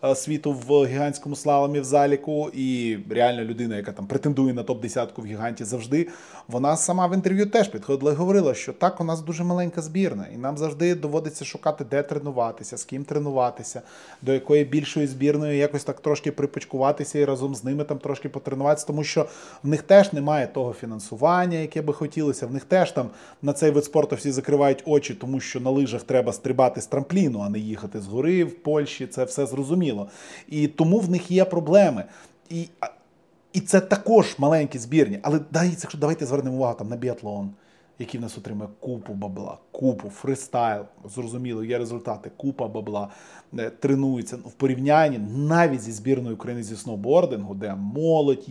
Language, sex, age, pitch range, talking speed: Russian, male, 20-39, 125-155 Hz, 175 wpm